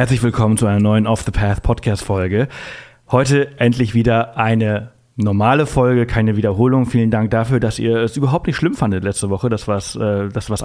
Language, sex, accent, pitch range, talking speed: German, male, German, 105-120 Hz, 175 wpm